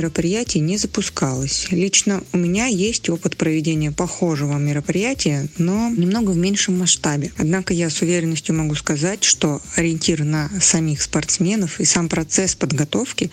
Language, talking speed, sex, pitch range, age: Russian, 135 wpm, female, 160-195 Hz, 20-39